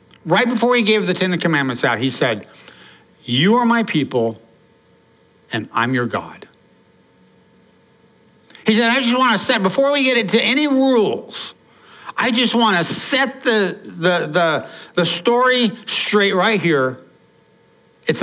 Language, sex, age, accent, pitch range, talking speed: English, male, 60-79, American, 165-245 Hz, 150 wpm